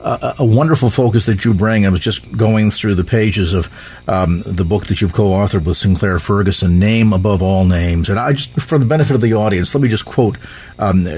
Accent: American